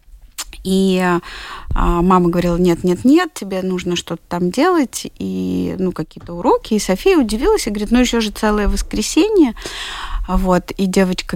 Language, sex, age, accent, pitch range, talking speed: Russian, female, 30-49, native, 175-225 Hz, 150 wpm